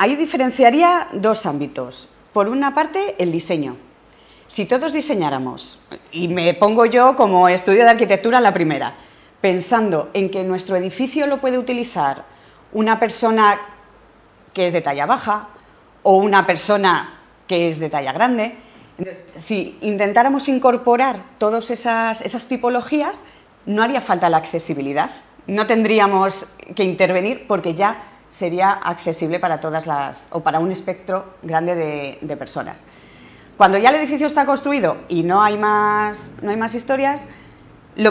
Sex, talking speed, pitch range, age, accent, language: female, 145 wpm, 175-235 Hz, 40-59, Spanish, Spanish